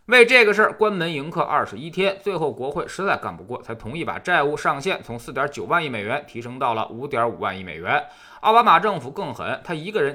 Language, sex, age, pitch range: Chinese, male, 20-39, 140-220 Hz